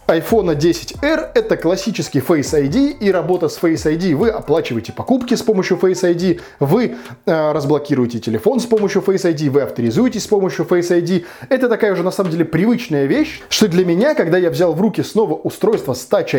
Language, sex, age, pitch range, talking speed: Russian, male, 20-39, 145-210 Hz, 190 wpm